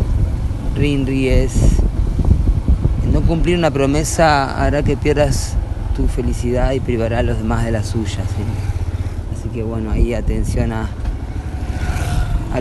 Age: 20-39